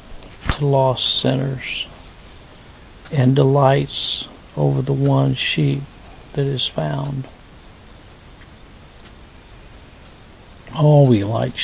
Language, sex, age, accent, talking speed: English, male, 60-79, American, 75 wpm